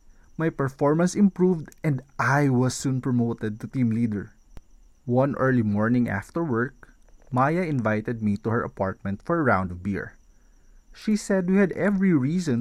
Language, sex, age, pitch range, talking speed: English, male, 20-39, 135-225 Hz, 155 wpm